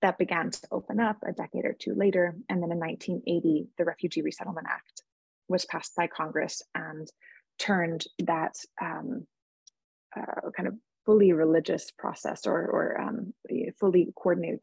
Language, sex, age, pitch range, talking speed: English, female, 20-39, 170-200 Hz, 150 wpm